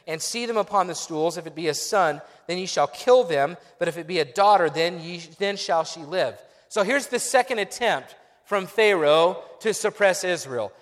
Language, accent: English, American